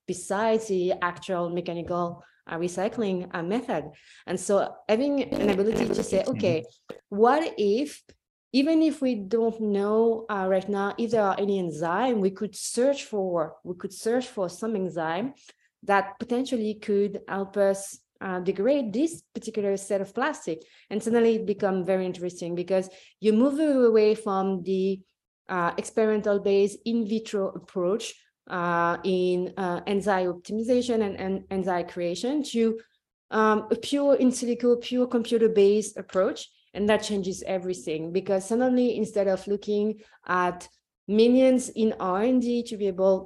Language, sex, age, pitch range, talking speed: English, female, 20-39, 185-230 Hz, 145 wpm